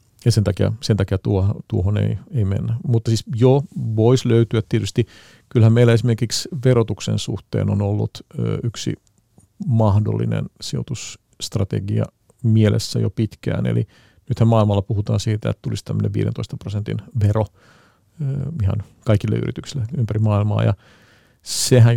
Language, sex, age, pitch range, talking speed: Finnish, male, 50-69, 105-125 Hz, 130 wpm